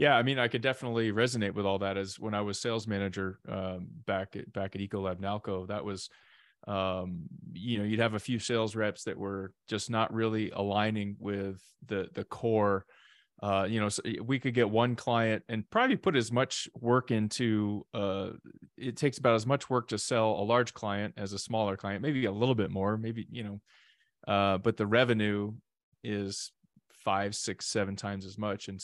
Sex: male